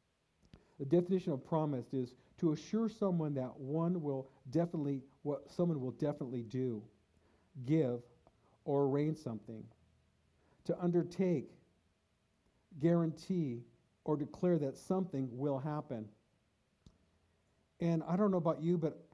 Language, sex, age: English, male, 50-69